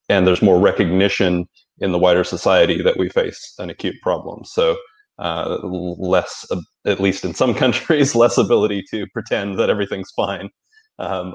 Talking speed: 165 wpm